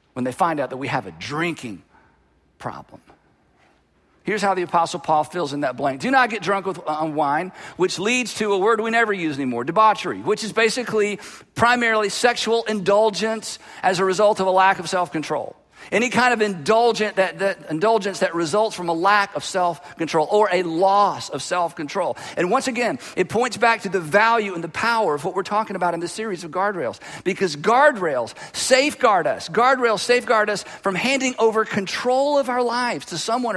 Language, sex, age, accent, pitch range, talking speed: English, male, 50-69, American, 180-230 Hz, 185 wpm